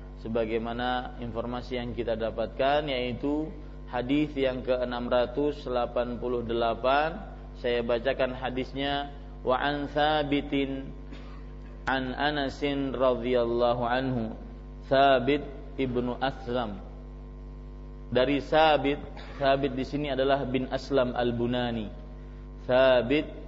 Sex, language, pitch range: male, English, 120-140 Hz